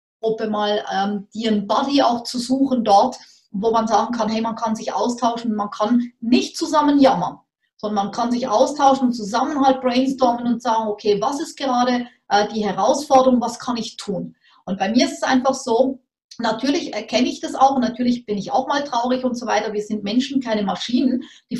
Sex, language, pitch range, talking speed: female, German, 225-265 Hz, 205 wpm